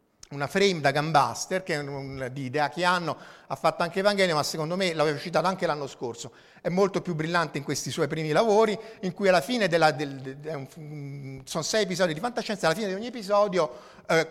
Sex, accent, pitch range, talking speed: male, native, 140-200 Hz, 205 wpm